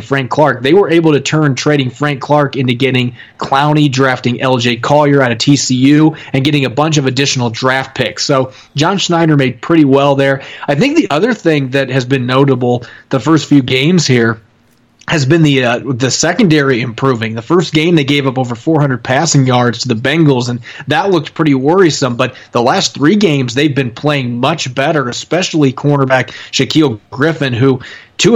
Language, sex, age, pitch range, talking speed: English, male, 30-49, 130-150 Hz, 190 wpm